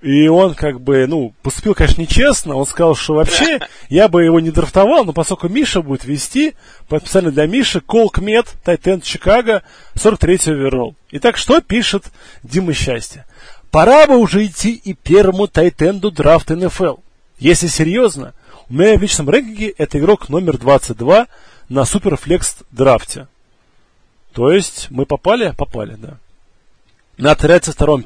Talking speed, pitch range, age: 145 wpm, 135-190 Hz, 30-49